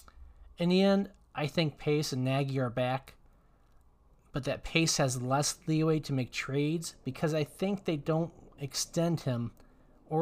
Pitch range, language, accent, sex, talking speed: 120-160 Hz, English, American, male, 160 wpm